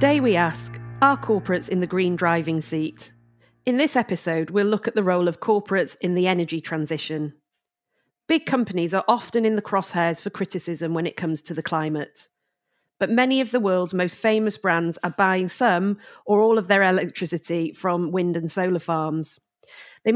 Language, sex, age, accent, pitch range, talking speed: English, female, 40-59, British, 170-210 Hz, 180 wpm